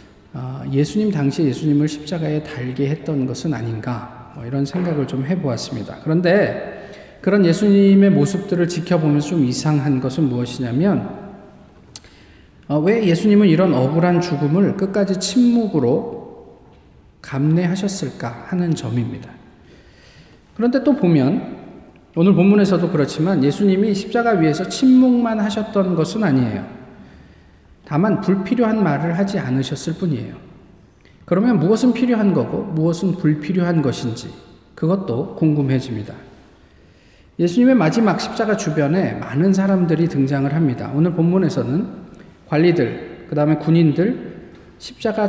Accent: native